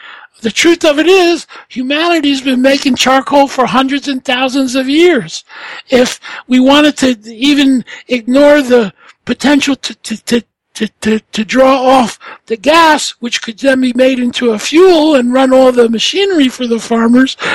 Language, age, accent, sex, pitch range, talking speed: English, 60-79, American, male, 245-305 Hz, 170 wpm